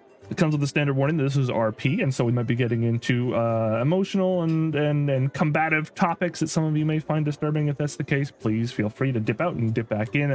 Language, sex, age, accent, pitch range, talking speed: English, male, 30-49, American, 115-160 Hz, 255 wpm